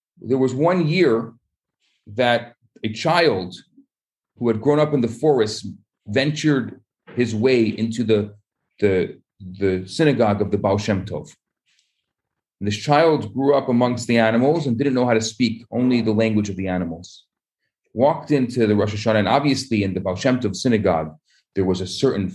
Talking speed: 170 wpm